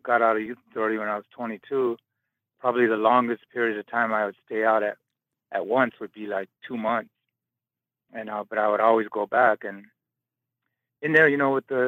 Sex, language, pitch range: male, English, 105-120 Hz